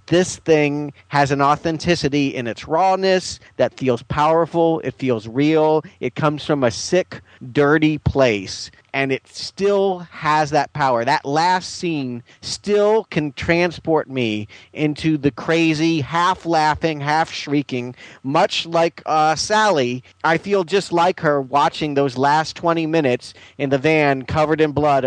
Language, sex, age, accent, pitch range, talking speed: English, male, 40-59, American, 130-165 Hz, 145 wpm